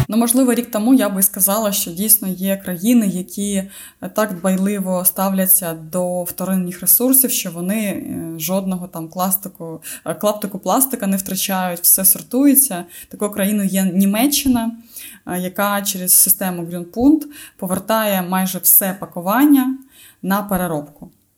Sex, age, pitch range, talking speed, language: female, 20-39, 180-230 Hz, 115 wpm, Ukrainian